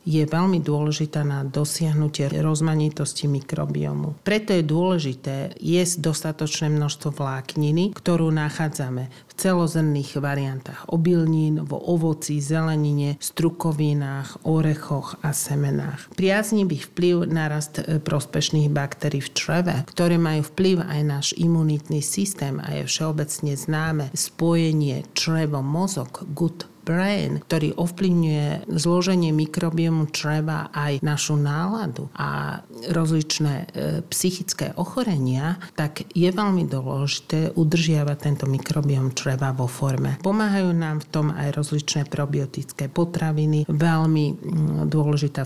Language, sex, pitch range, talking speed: Slovak, male, 140-165 Hz, 110 wpm